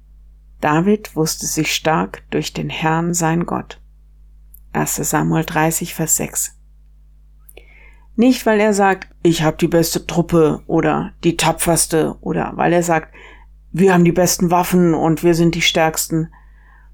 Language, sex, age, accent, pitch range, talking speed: German, female, 50-69, German, 130-175 Hz, 140 wpm